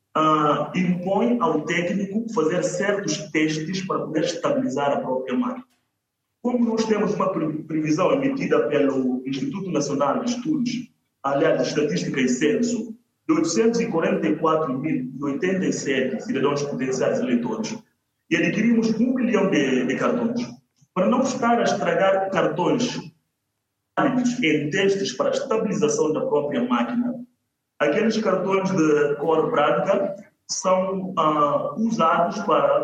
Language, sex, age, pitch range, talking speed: Portuguese, male, 30-49, 155-240 Hz, 115 wpm